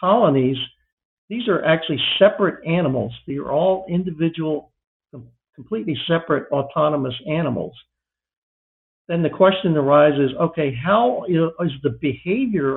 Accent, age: American, 60-79